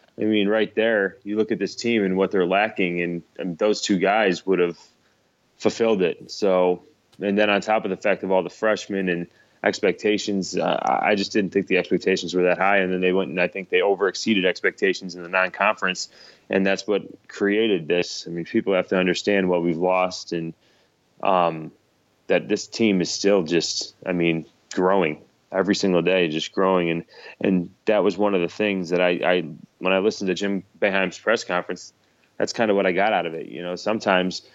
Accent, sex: American, male